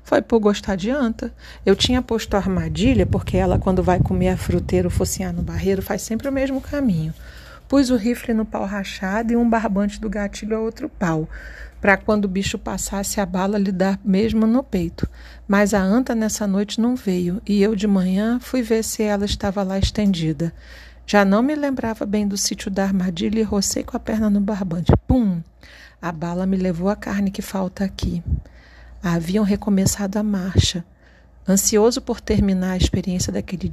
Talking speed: 185 wpm